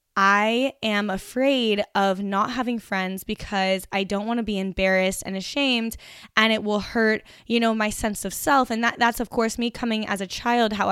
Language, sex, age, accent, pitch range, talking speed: English, female, 10-29, American, 195-230 Hz, 205 wpm